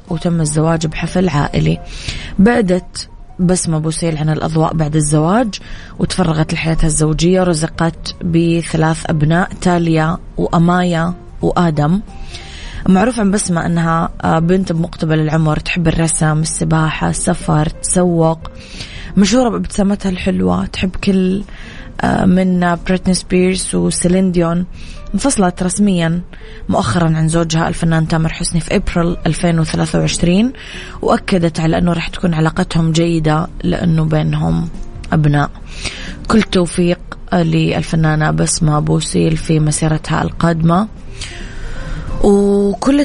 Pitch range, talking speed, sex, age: 160-185 Hz, 100 wpm, female, 20-39